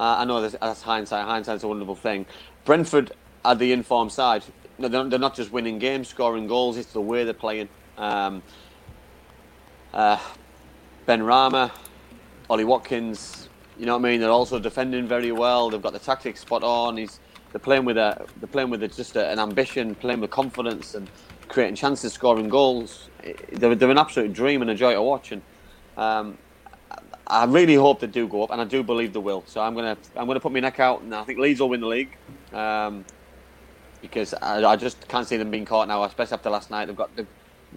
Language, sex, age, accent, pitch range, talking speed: English, male, 30-49, British, 100-125 Hz, 210 wpm